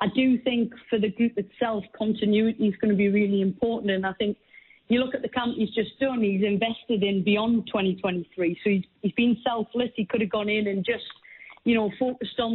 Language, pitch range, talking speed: English, 205-235 Hz, 220 wpm